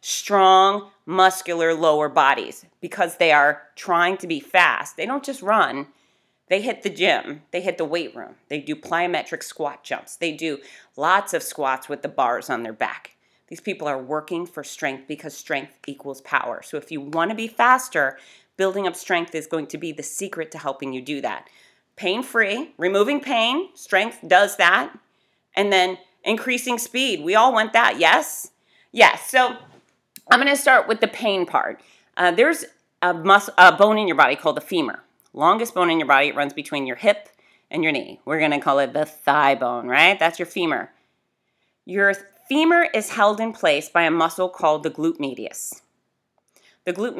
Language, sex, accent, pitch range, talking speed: English, female, American, 150-205 Hz, 185 wpm